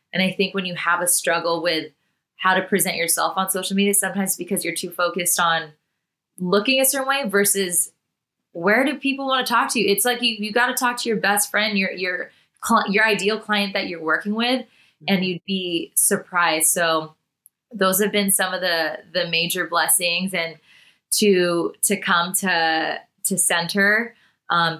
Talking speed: 185 wpm